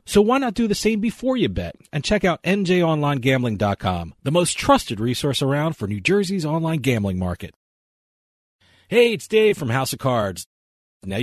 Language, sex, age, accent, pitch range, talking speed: English, male, 40-59, American, 115-185 Hz, 170 wpm